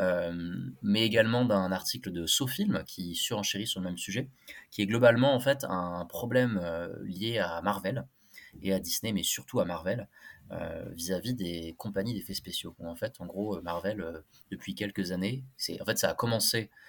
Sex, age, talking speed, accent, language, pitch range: male, 20-39, 190 wpm, French, French, 90-110 Hz